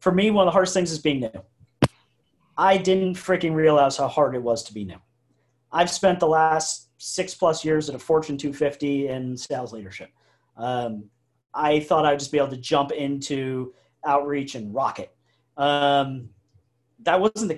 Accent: American